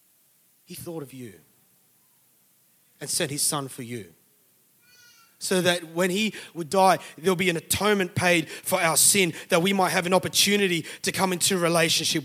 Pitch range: 145-185 Hz